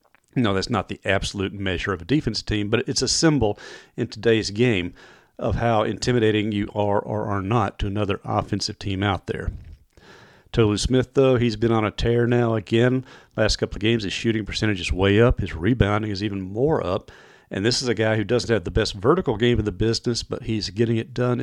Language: English